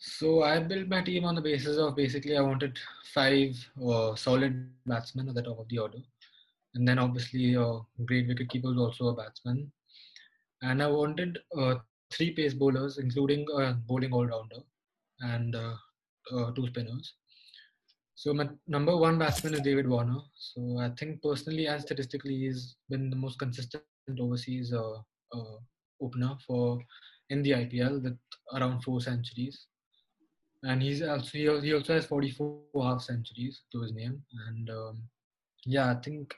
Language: English